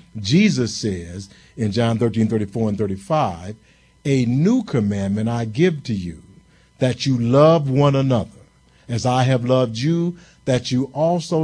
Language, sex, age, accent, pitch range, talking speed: English, male, 50-69, American, 110-140 Hz, 150 wpm